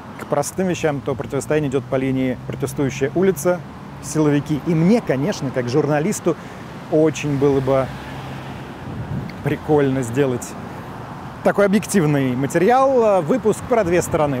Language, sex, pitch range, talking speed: Russian, male, 140-180 Hz, 115 wpm